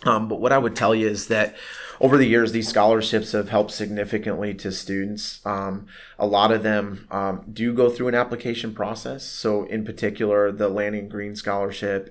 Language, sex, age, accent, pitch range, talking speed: English, male, 30-49, American, 95-110 Hz, 190 wpm